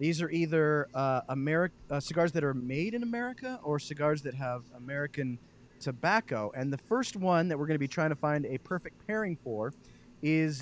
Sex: male